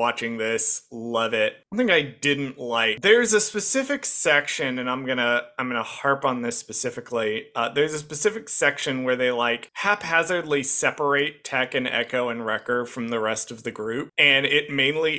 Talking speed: 180 wpm